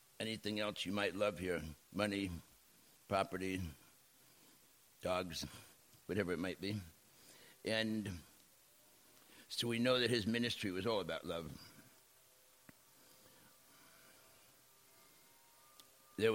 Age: 60-79